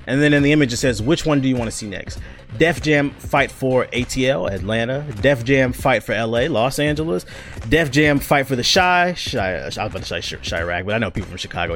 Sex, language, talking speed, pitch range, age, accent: male, English, 245 wpm, 110-150 Hz, 30-49, American